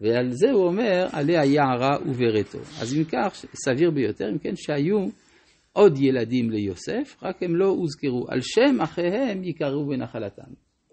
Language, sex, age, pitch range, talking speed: Hebrew, male, 50-69, 110-150 Hz, 150 wpm